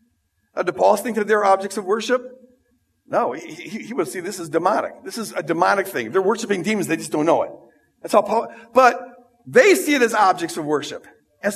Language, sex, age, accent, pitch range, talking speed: English, male, 50-69, American, 195-260 Hz, 230 wpm